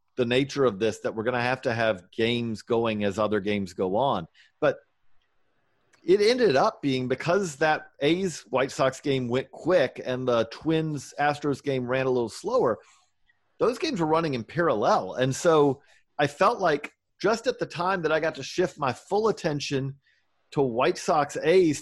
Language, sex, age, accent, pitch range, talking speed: English, male, 40-59, American, 130-180 Hz, 185 wpm